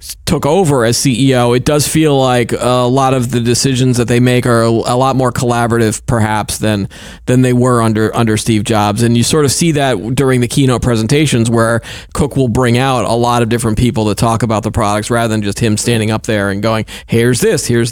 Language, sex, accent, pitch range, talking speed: English, male, American, 115-145 Hz, 230 wpm